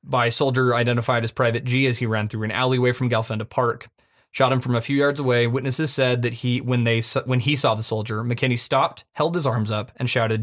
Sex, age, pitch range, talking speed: male, 20-39, 110-125 Hz, 235 wpm